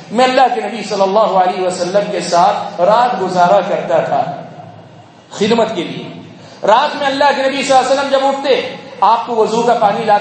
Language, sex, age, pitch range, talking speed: English, male, 40-59, 215-275 Hz, 200 wpm